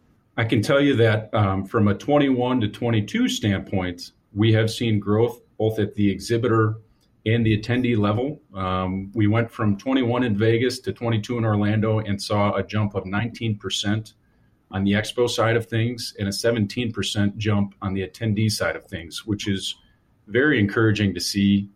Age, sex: 40-59, male